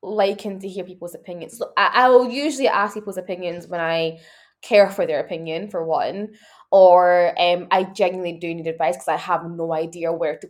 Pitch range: 175-245 Hz